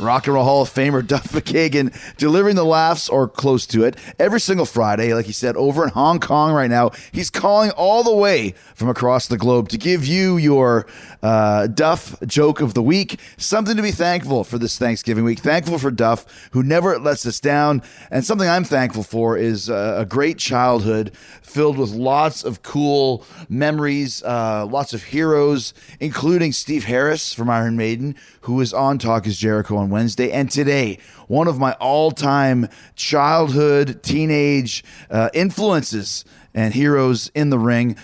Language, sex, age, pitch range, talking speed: English, male, 30-49, 115-150 Hz, 175 wpm